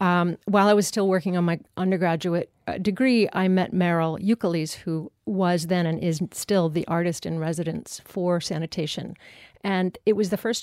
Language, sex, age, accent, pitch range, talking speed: English, female, 50-69, American, 175-210 Hz, 165 wpm